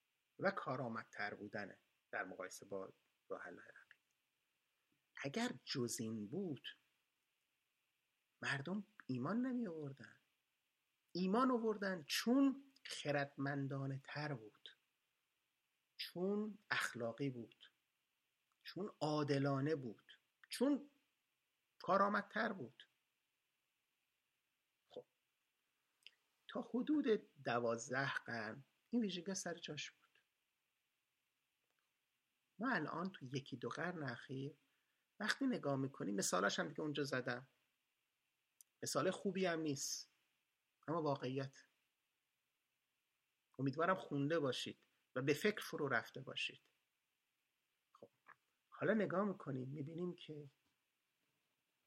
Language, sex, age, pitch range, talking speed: Persian, male, 50-69, 135-195 Hz, 85 wpm